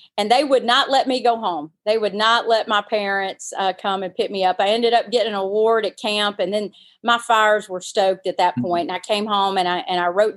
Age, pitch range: 40-59, 185-210 Hz